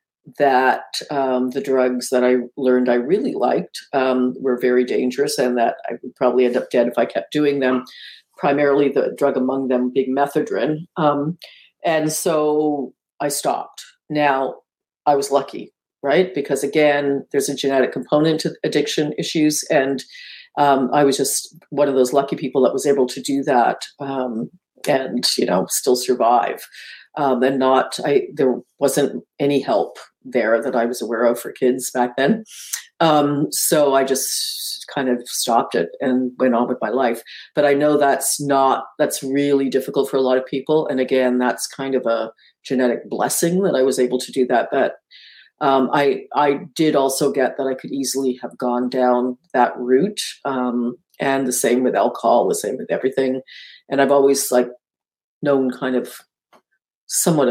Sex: female